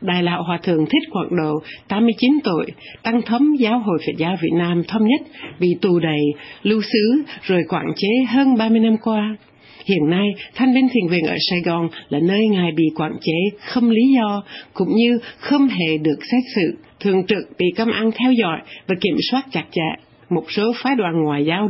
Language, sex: Vietnamese, female